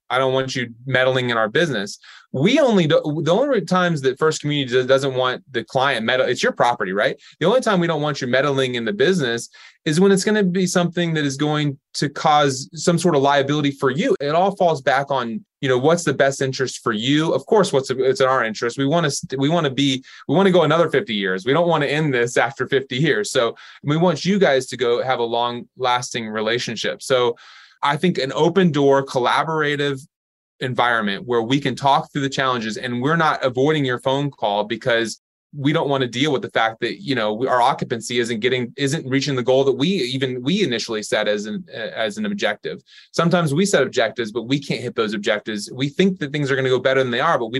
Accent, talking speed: American, 235 wpm